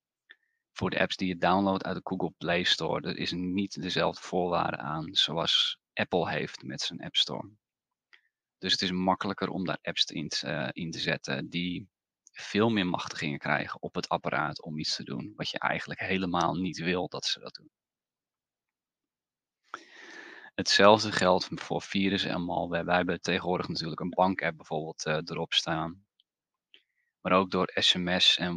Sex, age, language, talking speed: male, 30-49, Dutch, 170 wpm